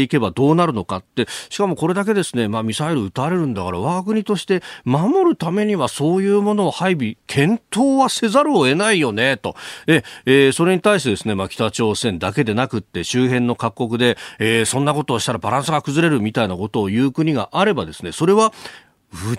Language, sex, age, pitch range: Japanese, male, 40-59, 105-175 Hz